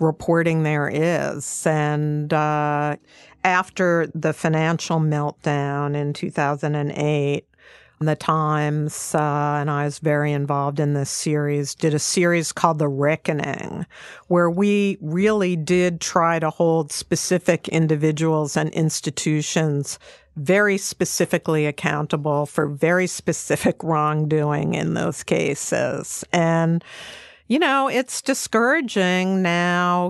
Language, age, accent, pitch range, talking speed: English, 50-69, American, 150-175 Hz, 110 wpm